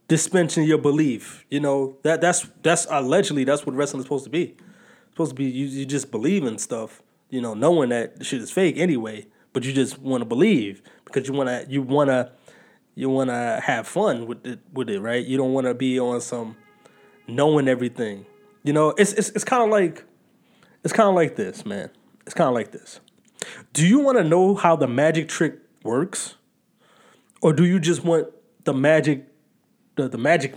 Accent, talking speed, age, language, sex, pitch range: American, 205 wpm, 20-39, English, male, 135-210 Hz